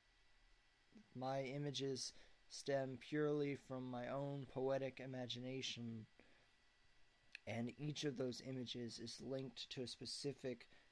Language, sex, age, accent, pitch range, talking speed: English, male, 20-39, American, 120-135 Hz, 105 wpm